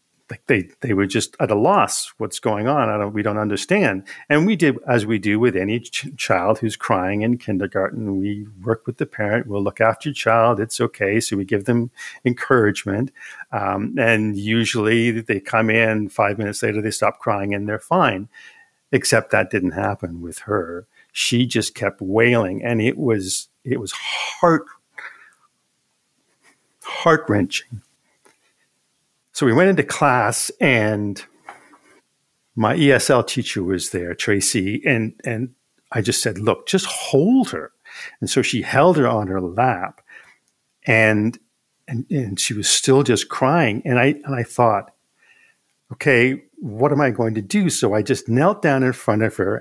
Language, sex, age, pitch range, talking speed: English, male, 50-69, 105-125 Hz, 165 wpm